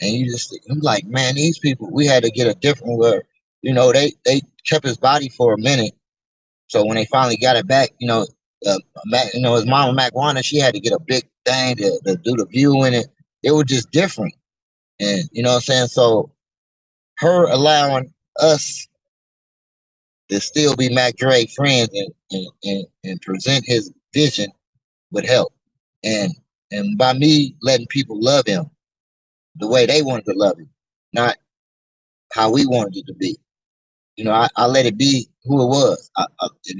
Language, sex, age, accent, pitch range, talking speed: English, male, 30-49, American, 115-140 Hz, 195 wpm